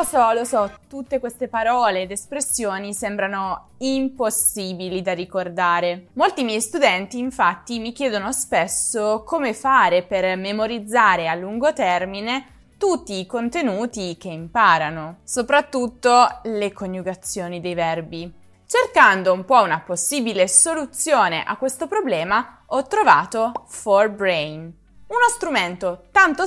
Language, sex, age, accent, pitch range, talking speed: Italian, female, 20-39, native, 185-265 Hz, 120 wpm